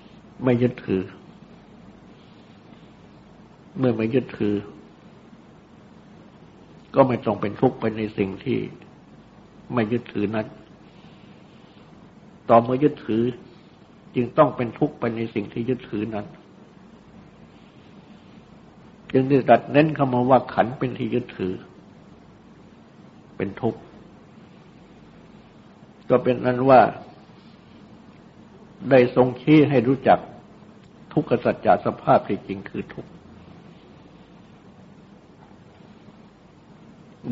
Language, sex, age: Thai, male, 60-79